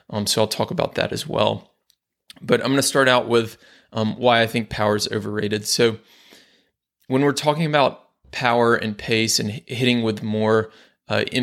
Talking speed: 185 wpm